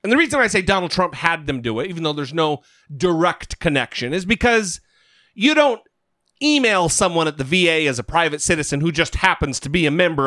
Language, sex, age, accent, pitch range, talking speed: English, male, 40-59, American, 150-235 Hz, 215 wpm